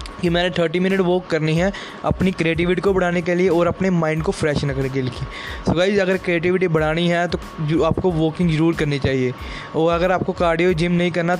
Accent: native